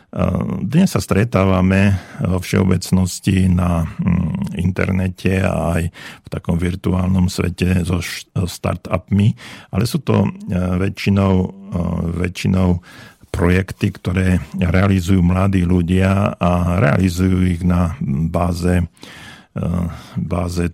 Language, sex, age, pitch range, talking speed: Slovak, male, 50-69, 90-100 Hz, 90 wpm